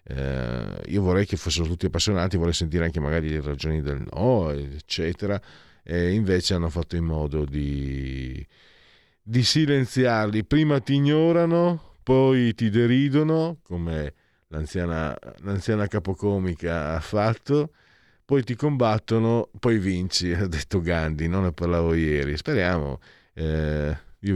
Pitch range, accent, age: 80-110 Hz, native, 50-69